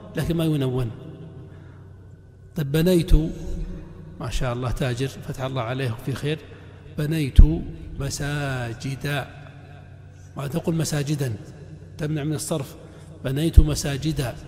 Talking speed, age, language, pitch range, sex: 100 wpm, 60-79, Arabic, 130-180 Hz, male